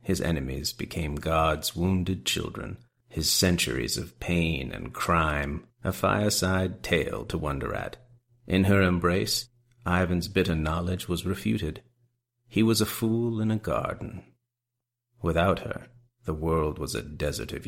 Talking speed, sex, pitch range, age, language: 140 wpm, male, 85-120 Hz, 40-59, English